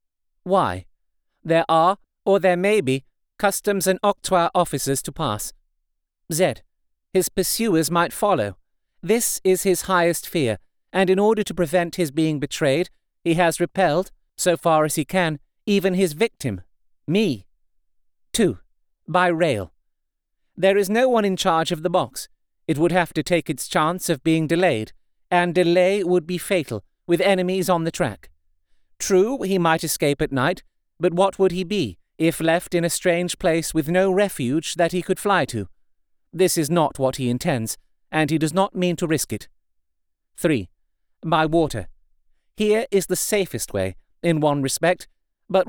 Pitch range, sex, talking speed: 135-185 Hz, male, 165 wpm